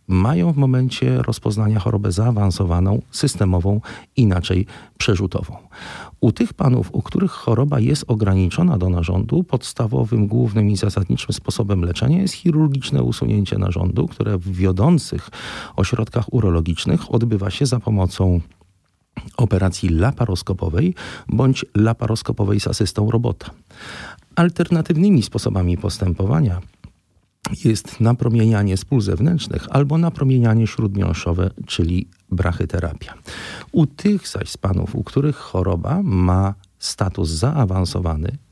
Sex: male